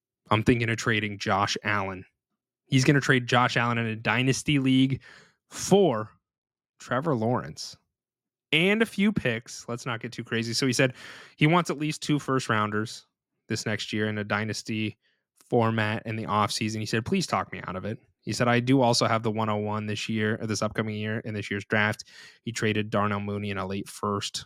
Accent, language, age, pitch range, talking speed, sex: American, English, 20-39, 105-150 Hz, 205 wpm, male